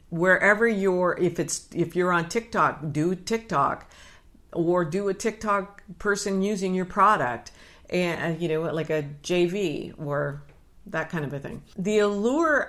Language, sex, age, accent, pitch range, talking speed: English, female, 50-69, American, 150-190 Hz, 150 wpm